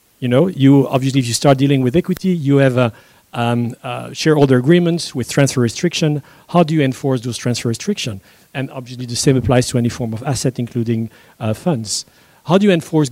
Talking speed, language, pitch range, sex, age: 200 wpm, English, 120-145 Hz, male, 40-59